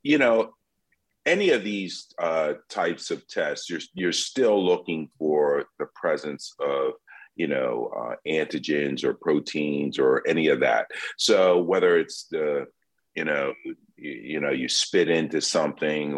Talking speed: 150 wpm